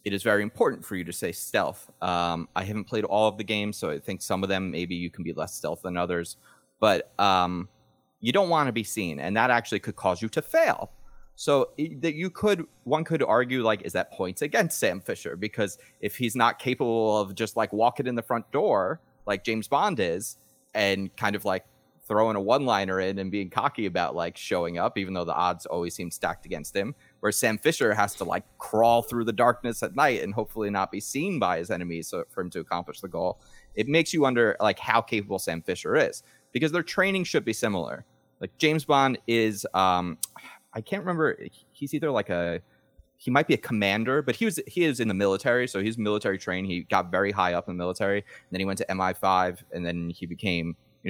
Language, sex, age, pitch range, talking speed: English, male, 30-49, 95-120 Hz, 225 wpm